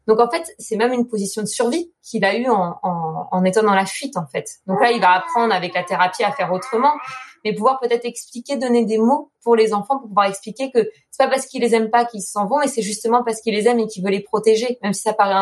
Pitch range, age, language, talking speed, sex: 195-245 Hz, 20-39, French, 280 wpm, female